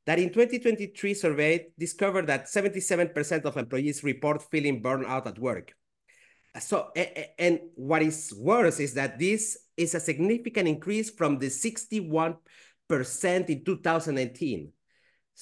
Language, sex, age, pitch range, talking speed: English, male, 30-49, 145-190 Hz, 115 wpm